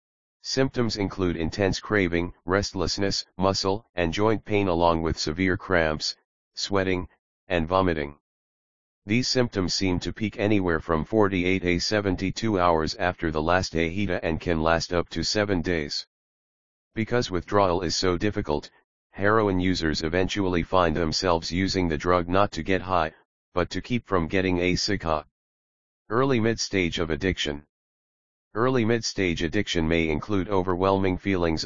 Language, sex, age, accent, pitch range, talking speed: English, male, 40-59, American, 80-100 Hz, 140 wpm